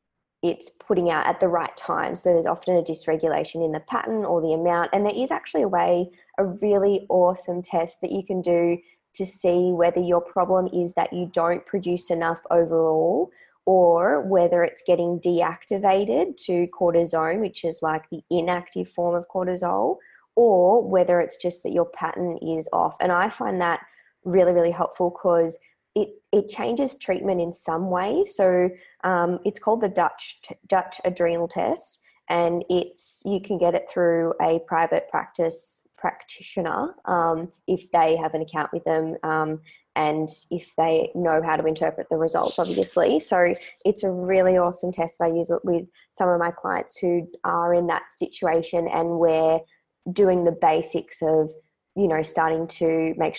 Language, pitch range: English, 165-185 Hz